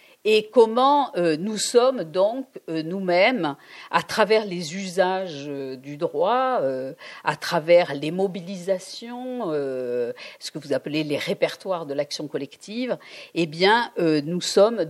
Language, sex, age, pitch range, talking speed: French, female, 50-69, 165-250 Hz, 140 wpm